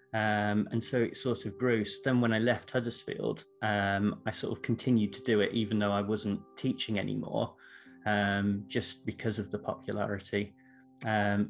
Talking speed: 180 wpm